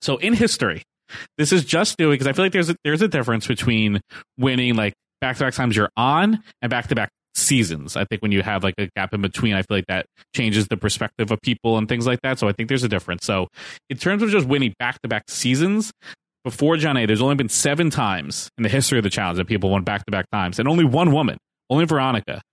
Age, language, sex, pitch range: 20-39, English, male, 105-140 Hz